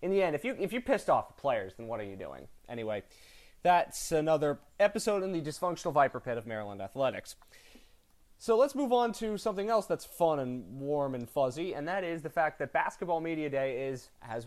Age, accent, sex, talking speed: 20-39, American, male, 215 wpm